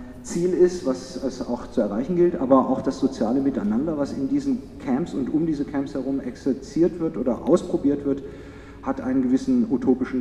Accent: German